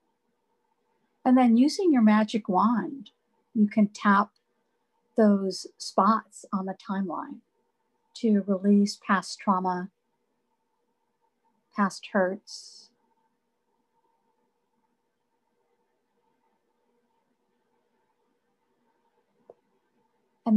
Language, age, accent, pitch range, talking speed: English, 50-69, American, 185-230 Hz, 60 wpm